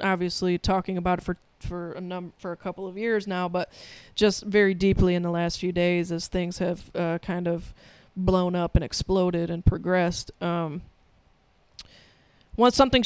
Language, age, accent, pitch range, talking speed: English, 20-39, American, 175-210 Hz, 175 wpm